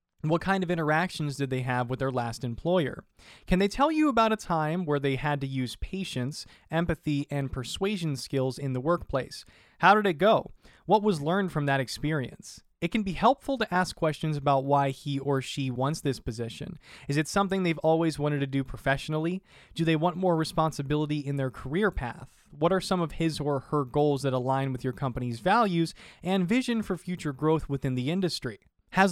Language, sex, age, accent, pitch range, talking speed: English, male, 20-39, American, 140-185 Hz, 200 wpm